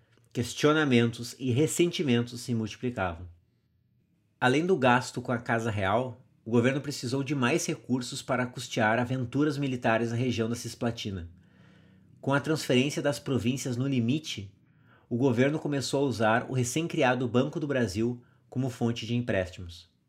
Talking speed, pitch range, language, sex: 140 wpm, 115-140 Hz, Portuguese, male